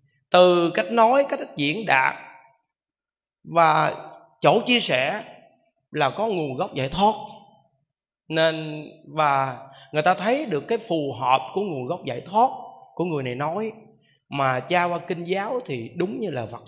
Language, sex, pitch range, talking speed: Vietnamese, male, 140-220 Hz, 160 wpm